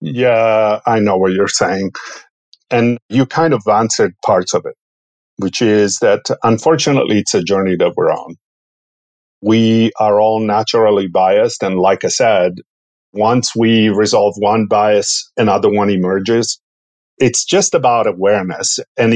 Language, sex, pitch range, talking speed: English, male, 105-125 Hz, 145 wpm